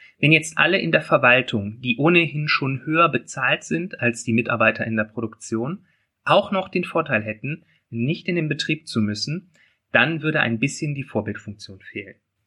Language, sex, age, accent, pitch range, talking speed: German, male, 30-49, German, 110-155 Hz, 175 wpm